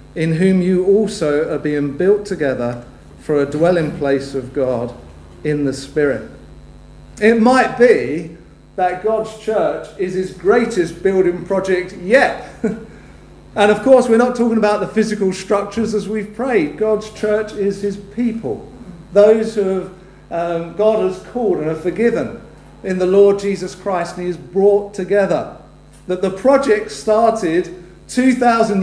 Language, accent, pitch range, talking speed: English, British, 170-215 Hz, 150 wpm